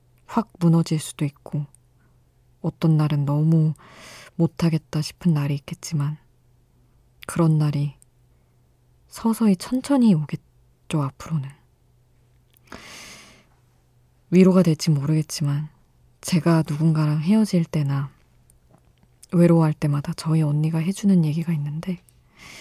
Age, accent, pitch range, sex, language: 20-39, native, 125-170 Hz, female, Korean